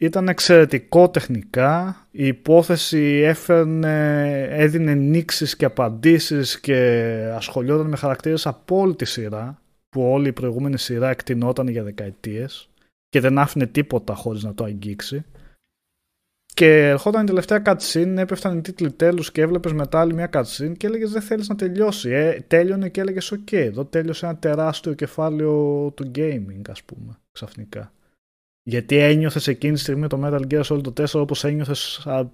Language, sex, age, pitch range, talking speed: Greek, male, 20-39, 120-160 Hz, 150 wpm